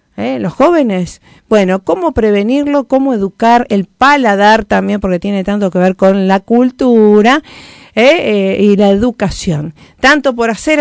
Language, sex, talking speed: Spanish, female, 150 wpm